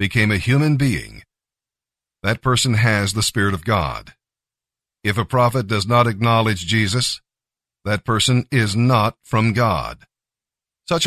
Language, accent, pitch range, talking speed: English, American, 105-125 Hz, 135 wpm